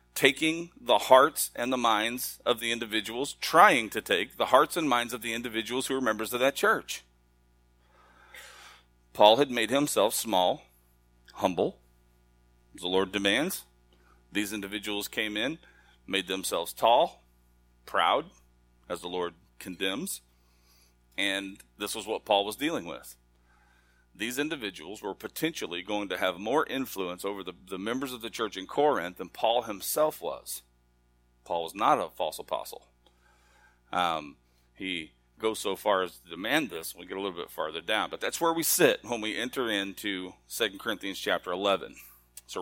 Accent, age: American, 40-59